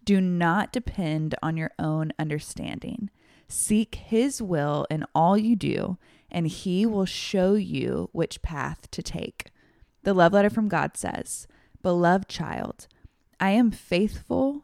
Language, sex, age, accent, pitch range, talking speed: English, female, 20-39, American, 175-215 Hz, 140 wpm